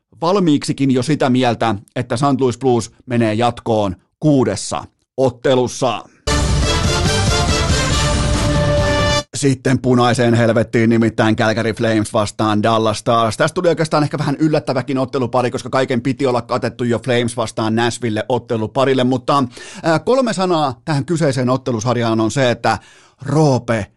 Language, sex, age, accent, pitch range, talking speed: Finnish, male, 30-49, native, 120-165 Hz, 120 wpm